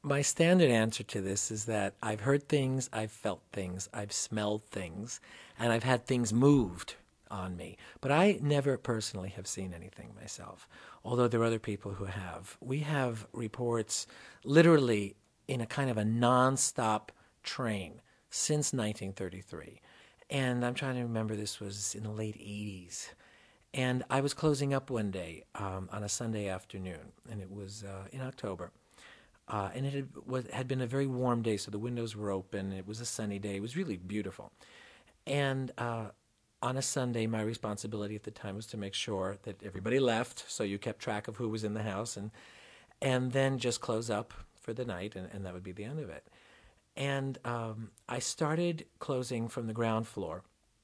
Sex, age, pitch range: male, 50-69, 100-125 Hz